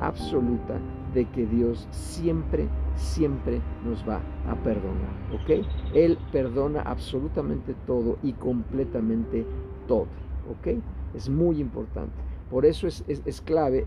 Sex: male